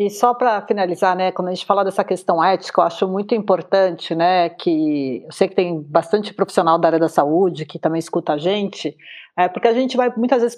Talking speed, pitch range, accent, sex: 225 wpm, 195-255 Hz, Brazilian, female